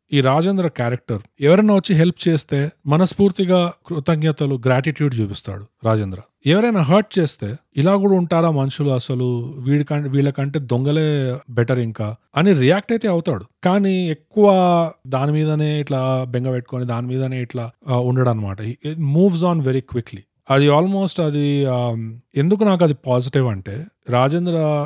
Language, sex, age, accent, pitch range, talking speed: Telugu, male, 30-49, native, 120-150 Hz, 125 wpm